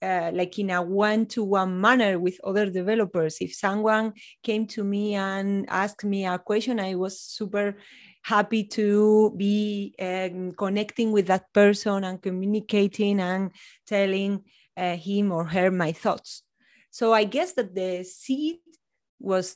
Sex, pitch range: female, 185-220 Hz